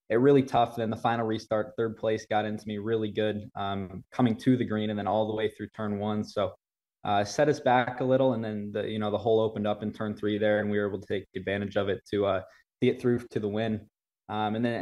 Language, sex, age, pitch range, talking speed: English, male, 20-39, 105-115 Hz, 275 wpm